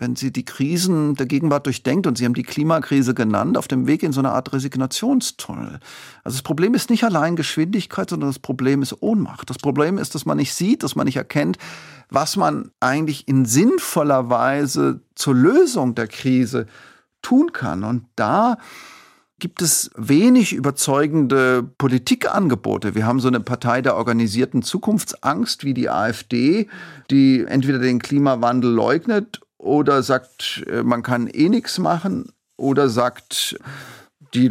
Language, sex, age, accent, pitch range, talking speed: German, male, 40-59, German, 120-155 Hz, 155 wpm